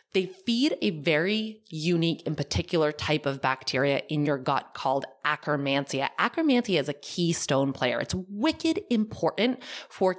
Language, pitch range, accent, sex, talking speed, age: English, 145-195 Hz, American, female, 140 wpm, 20-39